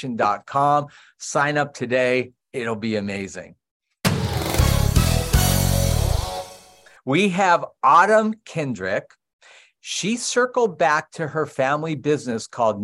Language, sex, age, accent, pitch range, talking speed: English, male, 50-69, American, 110-150 Hz, 95 wpm